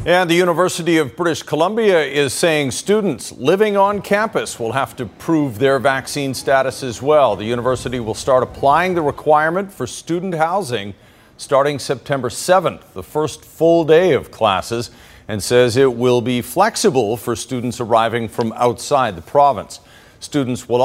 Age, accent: 50-69, American